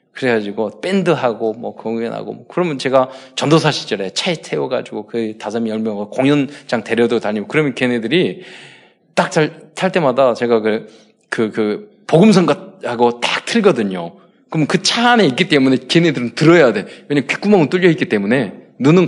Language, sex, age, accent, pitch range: Korean, male, 20-39, native, 115-185 Hz